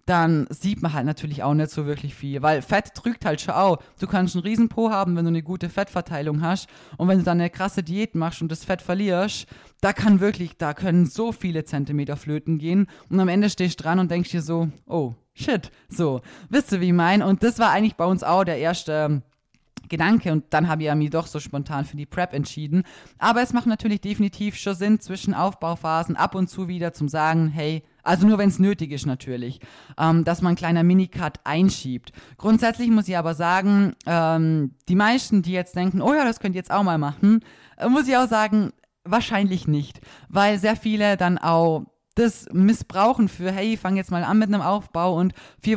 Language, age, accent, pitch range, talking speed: German, 20-39, German, 155-200 Hz, 215 wpm